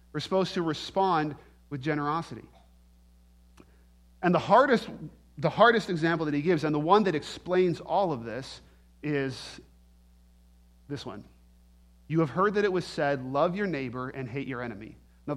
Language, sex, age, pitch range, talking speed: English, male, 40-59, 130-180 Hz, 160 wpm